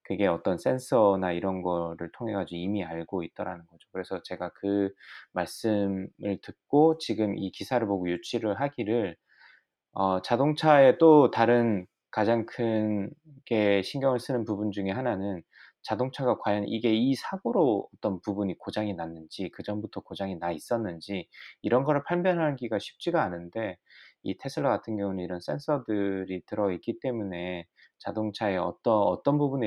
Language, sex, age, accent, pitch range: Korean, male, 20-39, native, 95-130 Hz